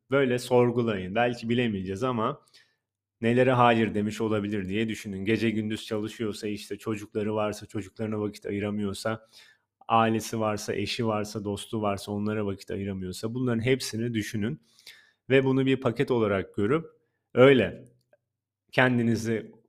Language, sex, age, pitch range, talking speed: Turkish, male, 30-49, 105-125 Hz, 120 wpm